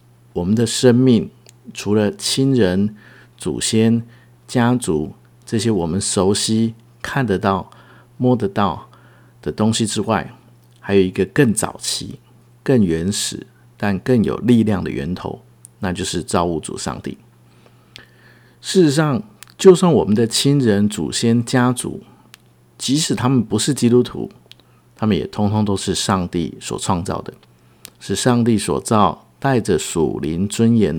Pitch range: 90-120 Hz